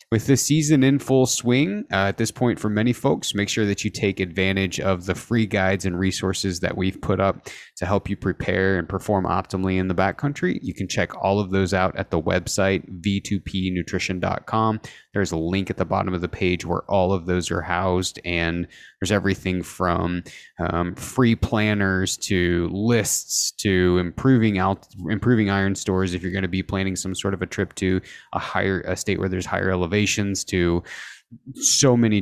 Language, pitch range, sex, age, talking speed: English, 90-110 Hz, male, 20-39, 190 wpm